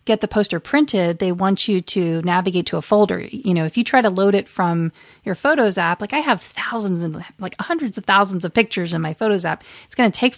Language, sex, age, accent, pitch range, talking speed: English, female, 40-59, American, 180-240 Hz, 250 wpm